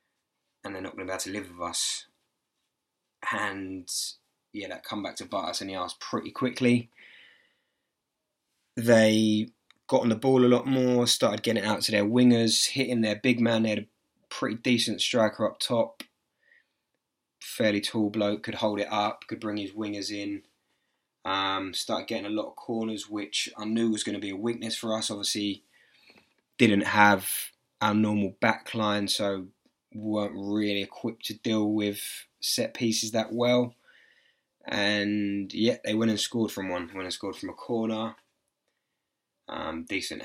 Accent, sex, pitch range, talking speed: British, male, 100-115 Hz, 170 wpm